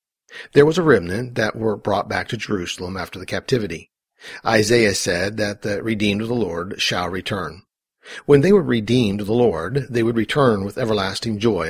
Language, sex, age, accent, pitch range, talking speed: English, male, 40-59, American, 105-130 Hz, 185 wpm